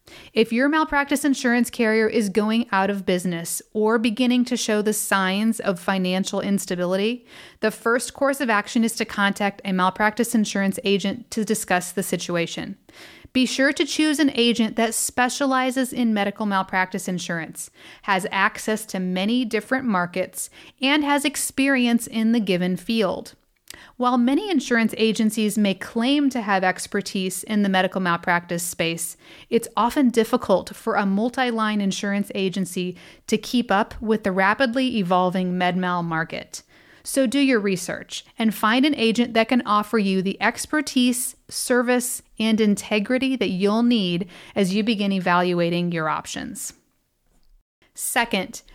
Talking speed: 145 wpm